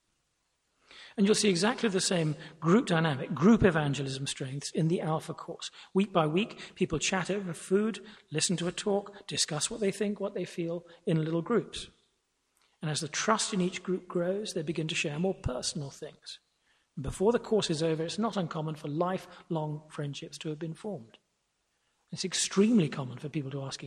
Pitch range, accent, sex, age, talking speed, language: 150-200 Hz, British, male, 40-59, 180 wpm, English